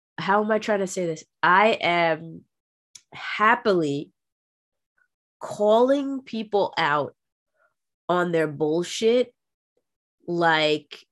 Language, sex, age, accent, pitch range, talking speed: English, female, 20-39, American, 160-210 Hz, 90 wpm